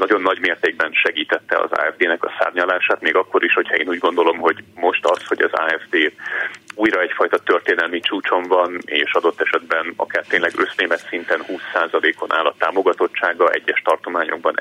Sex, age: male, 30-49